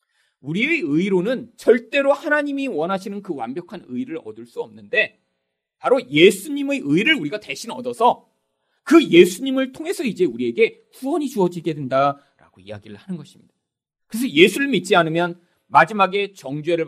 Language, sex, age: Korean, male, 40-59